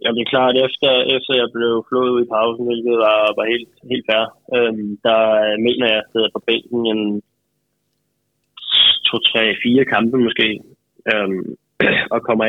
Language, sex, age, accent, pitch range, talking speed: Danish, male, 20-39, native, 110-120 Hz, 160 wpm